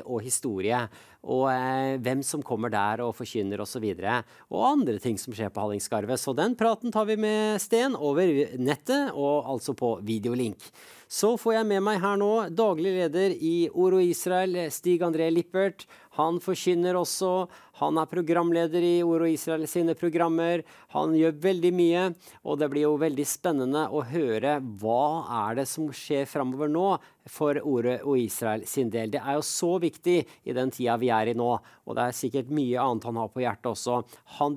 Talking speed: 195 wpm